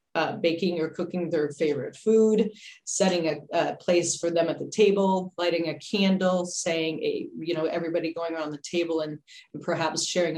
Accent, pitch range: American, 165-195 Hz